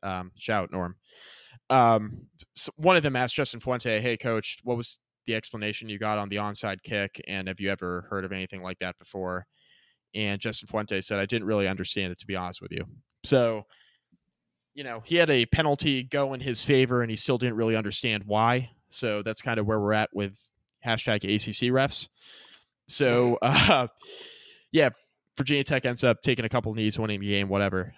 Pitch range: 100-125 Hz